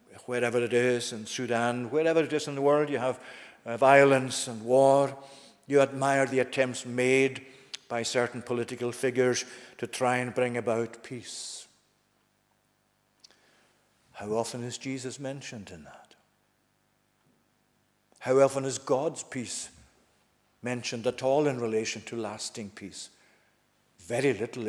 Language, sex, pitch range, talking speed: English, male, 120-145 Hz, 130 wpm